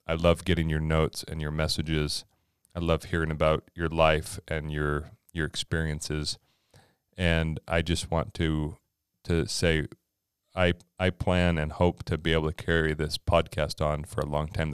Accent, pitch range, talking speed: American, 80-90 Hz, 170 wpm